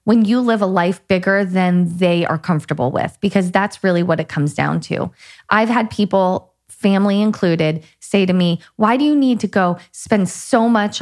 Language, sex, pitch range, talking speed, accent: English, female, 175-215 Hz, 195 wpm, American